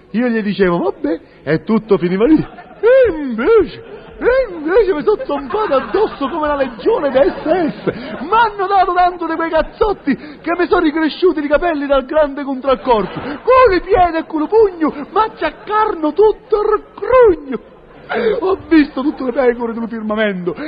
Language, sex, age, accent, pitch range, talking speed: Italian, male, 40-59, native, 260-370 Hz, 165 wpm